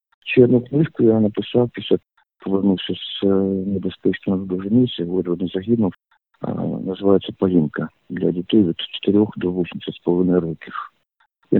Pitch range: 90-105 Hz